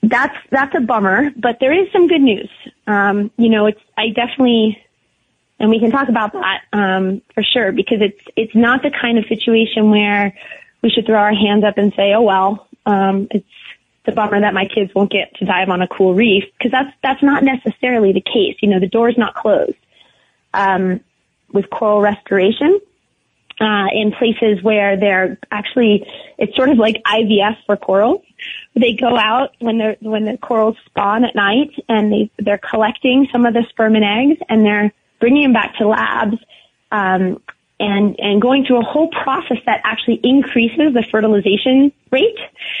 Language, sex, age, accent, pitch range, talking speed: English, female, 20-39, American, 205-245 Hz, 185 wpm